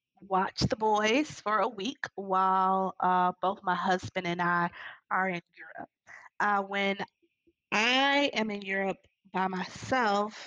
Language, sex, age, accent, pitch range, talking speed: English, female, 20-39, American, 190-215 Hz, 140 wpm